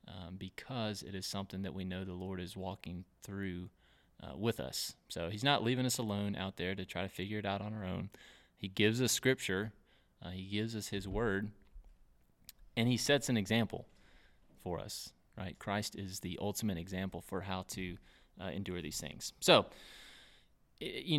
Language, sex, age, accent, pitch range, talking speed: English, male, 30-49, American, 95-115 Hz, 185 wpm